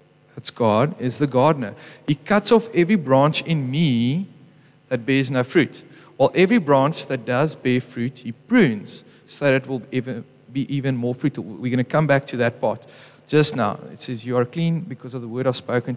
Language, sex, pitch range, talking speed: English, male, 125-150 Hz, 205 wpm